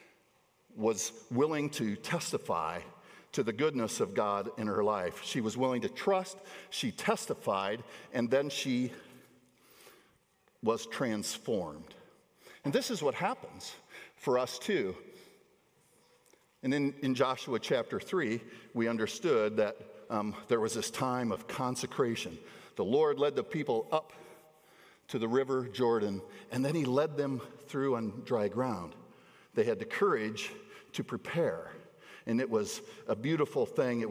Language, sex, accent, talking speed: English, male, American, 140 wpm